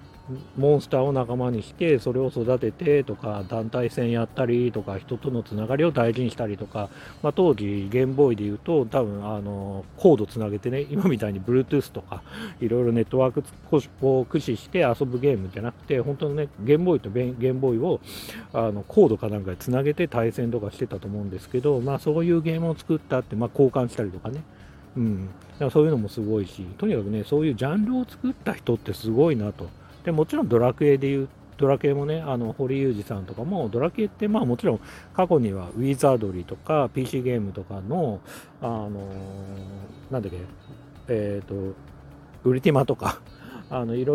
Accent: native